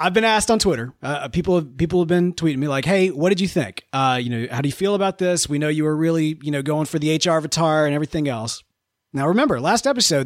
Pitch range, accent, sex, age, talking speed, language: 125-170 Hz, American, male, 30-49, 275 wpm, English